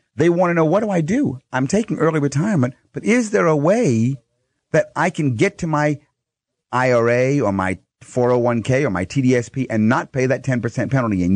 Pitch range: 110-155 Hz